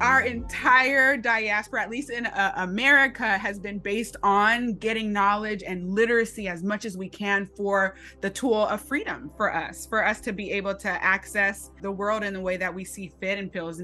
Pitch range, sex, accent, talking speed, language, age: 185-225 Hz, female, American, 200 wpm, English, 20-39